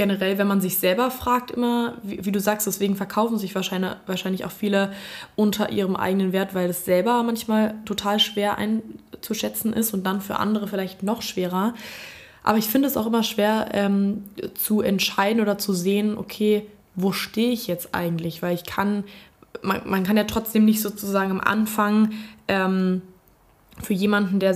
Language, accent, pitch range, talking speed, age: German, German, 190-215 Hz, 175 wpm, 20-39